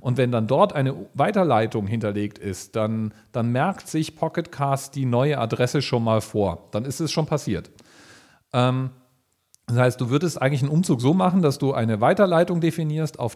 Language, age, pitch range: German, 40-59, 115-145 Hz